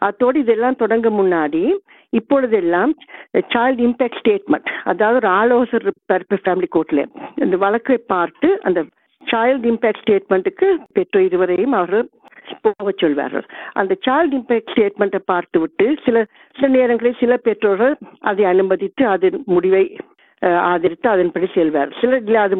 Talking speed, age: 120 wpm, 50-69